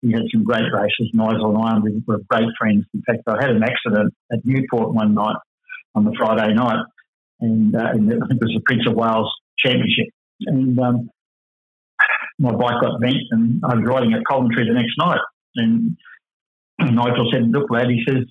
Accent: Australian